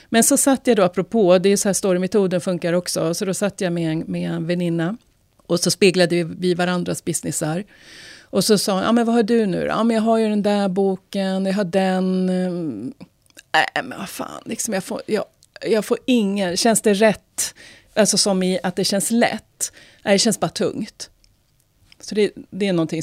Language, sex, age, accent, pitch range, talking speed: Swedish, female, 30-49, native, 175-230 Hz, 205 wpm